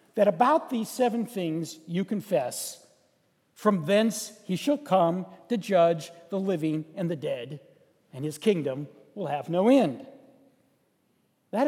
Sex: male